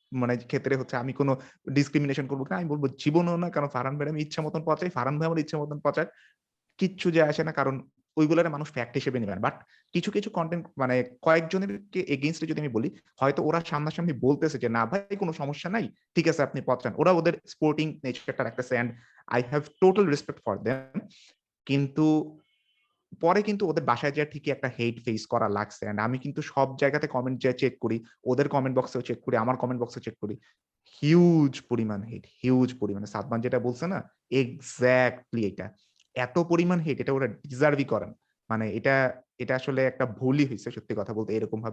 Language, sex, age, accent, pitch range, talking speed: Bengali, male, 30-49, native, 125-160 Hz, 40 wpm